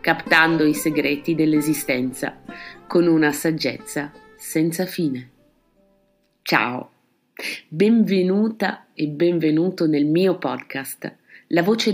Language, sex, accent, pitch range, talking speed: Italian, female, native, 155-215 Hz, 90 wpm